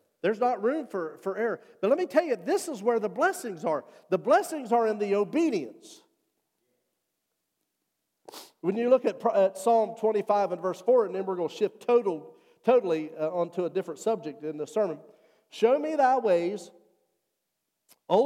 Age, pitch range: 50-69, 160-240 Hz